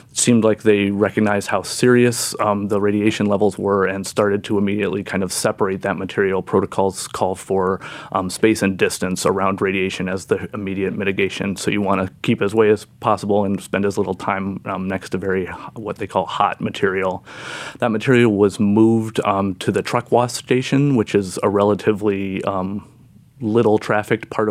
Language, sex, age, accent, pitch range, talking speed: English, male, 30-49, American, 100-110 Hz, 185 wpm